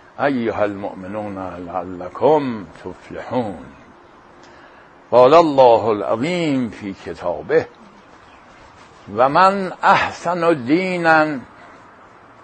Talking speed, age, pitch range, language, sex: 70 wpm, 60-79, 110-150 Hz, English, male